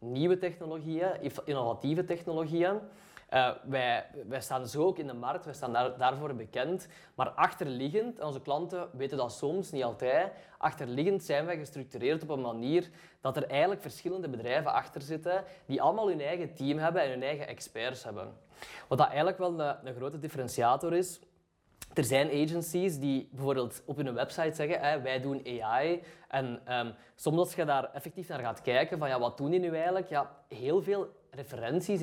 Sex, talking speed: male, 180 wpm